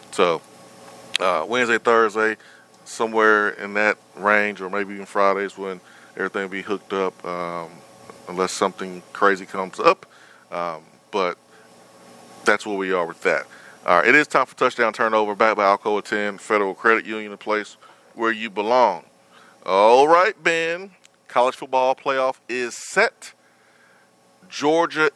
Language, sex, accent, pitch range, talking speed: English, male, American, 100-120 Hz, 145 wpm